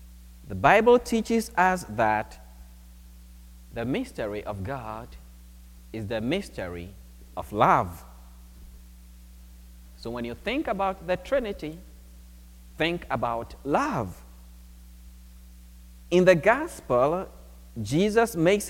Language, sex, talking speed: English, male, 95 wpm